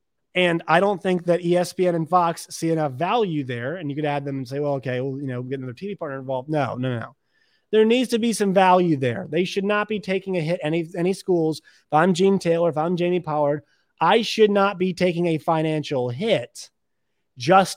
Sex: male